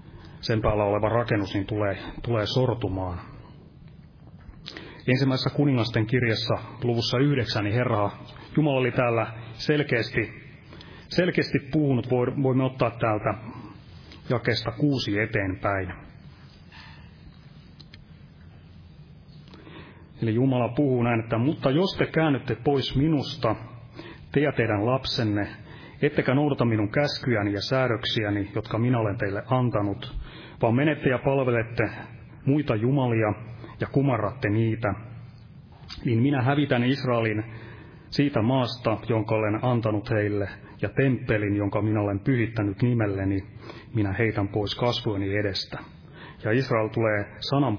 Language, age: Finnish, 30-49